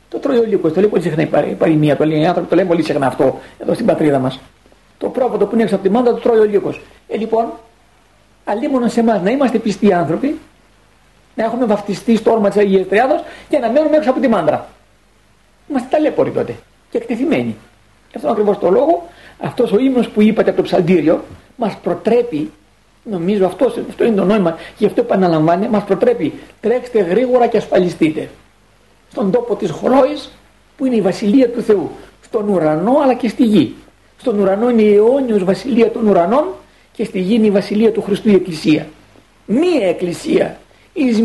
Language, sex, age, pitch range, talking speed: Greek, male, 50-69, 190-245 Hz, 190 wpm